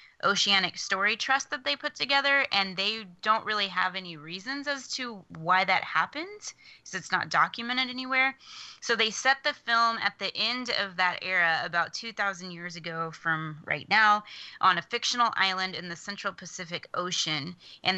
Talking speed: 175 wpm